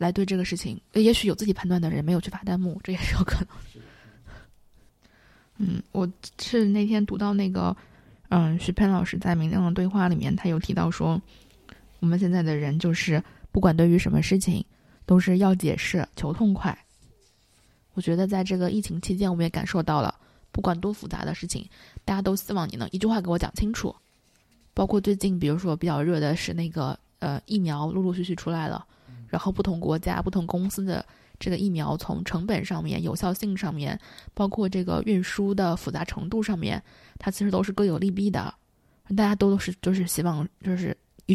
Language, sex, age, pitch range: Chinese, female, 20-39, 170-195 Hz